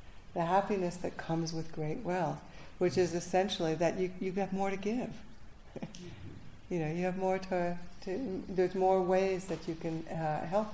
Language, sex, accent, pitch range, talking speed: English, female, American, 155-180 Hz, 180 wpm